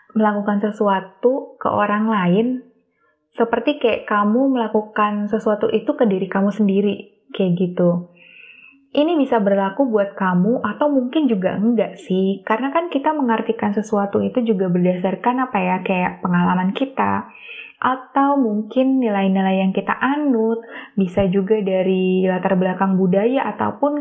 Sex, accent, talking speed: female, native, 130 wpm